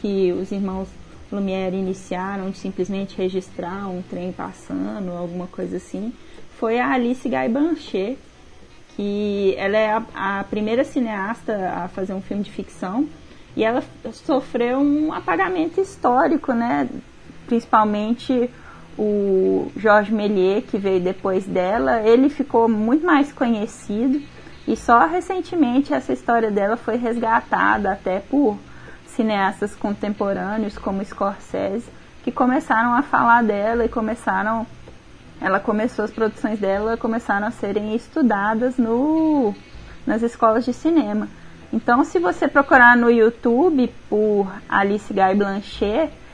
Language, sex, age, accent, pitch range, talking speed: Portuguese, female, 20-39, Brazilian, 200-250 Hz, 125 wpm